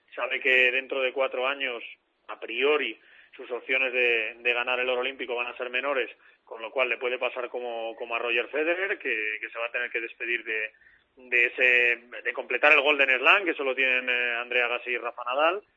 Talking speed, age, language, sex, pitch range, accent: 210 wpm, 30-49, Spanish, male, 125-160 Hz, Spanish